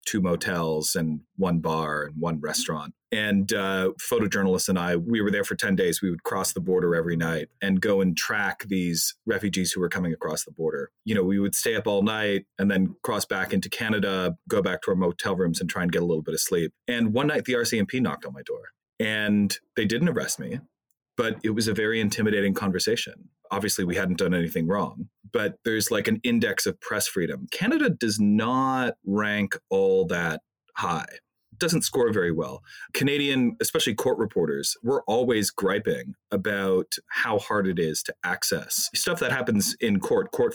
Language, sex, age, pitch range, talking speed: English, male, 30-49, 90-115 Hz, 200 wpm